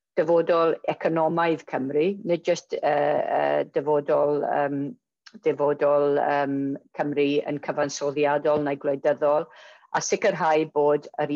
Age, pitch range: 50-69, 150-170 Hz